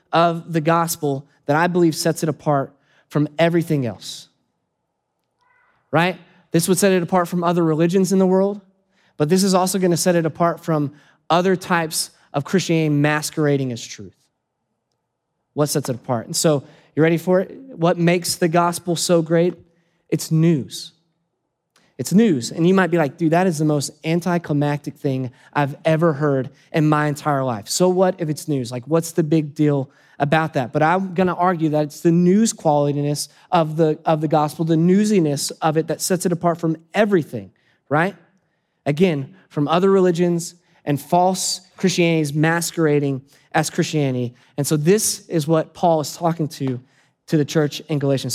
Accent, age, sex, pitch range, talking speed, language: American, 20-39, male, 150-175 Hz, 175 wpm, English